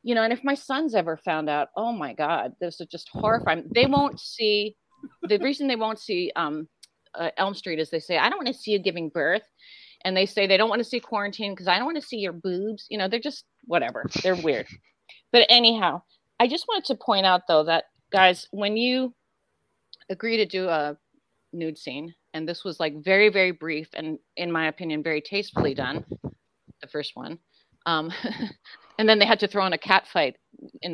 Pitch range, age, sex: 160-220 Hz, 30-49, female